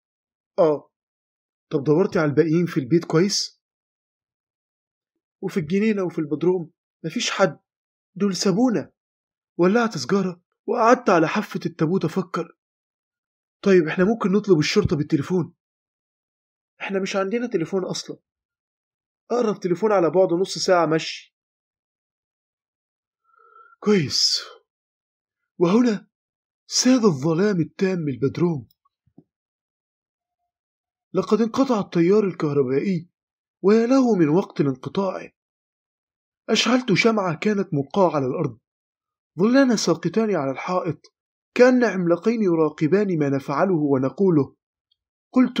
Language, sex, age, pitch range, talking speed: Arabic, male, 30-49, 160-210 Hz, 95 wpm